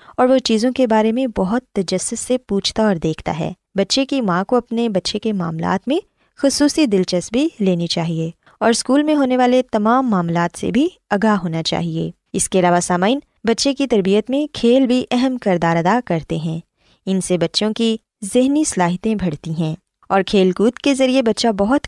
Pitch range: 180-255 Hz